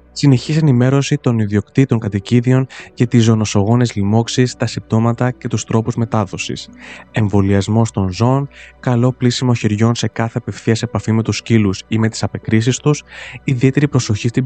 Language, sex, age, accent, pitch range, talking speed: Greek, male, 20-39, native, 105-130 Hz, 150 wpm